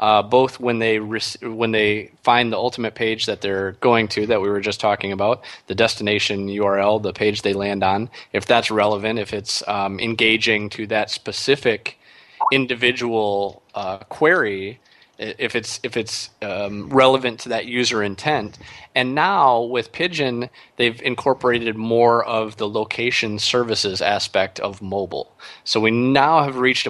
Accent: American